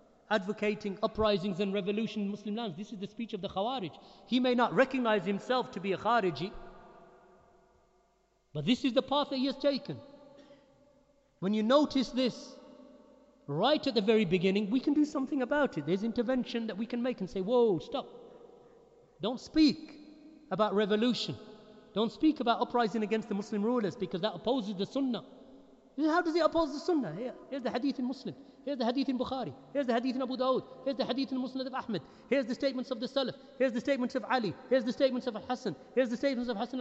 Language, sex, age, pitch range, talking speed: English, male, 40-59, 220-275 Hz, 200 wpm